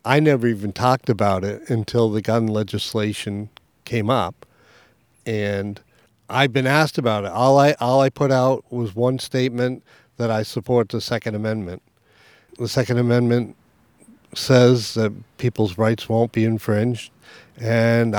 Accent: American